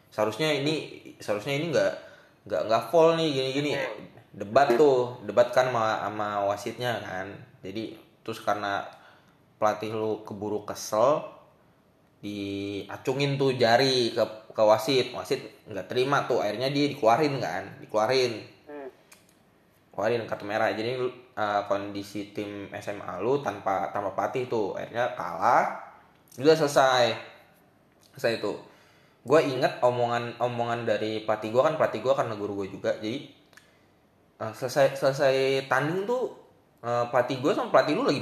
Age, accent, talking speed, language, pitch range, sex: 10-29, native, 130 wpm, Indonesian, 110-140 Hz, male